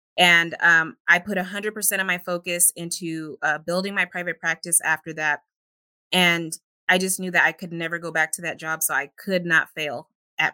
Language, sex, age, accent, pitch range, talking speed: English, female, 20-39, American, 160-185 Hz, 200 wpm